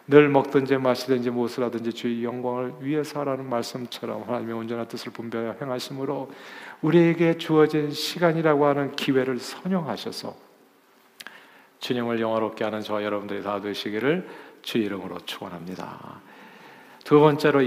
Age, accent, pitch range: 40-59, native, 120-160 Hz